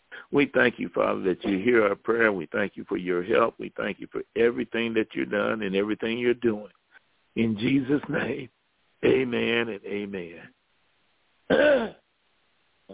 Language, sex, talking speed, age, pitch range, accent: English, male, 155 wpm, 60-79, 100-125 Hz, American